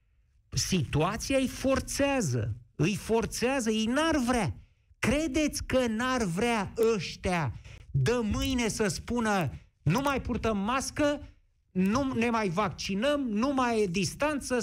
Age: 50-69